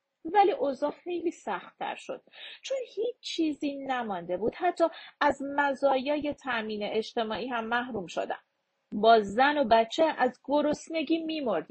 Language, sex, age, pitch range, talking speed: Persian, female, 40-59, 220-320 Hz, 125 wpm